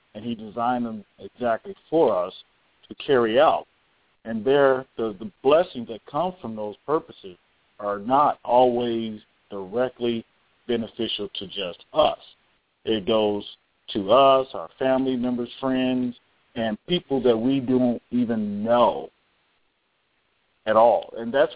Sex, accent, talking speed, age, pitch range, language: male, American, 130 wpm, 40-59, 110-135 Hz, English